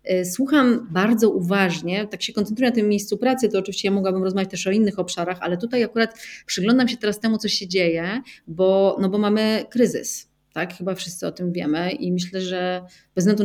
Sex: female